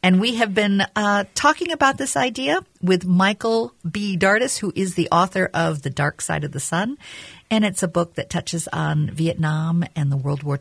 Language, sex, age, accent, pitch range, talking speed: English, female, 50-69, American, 150-210 Hz, 205 wpm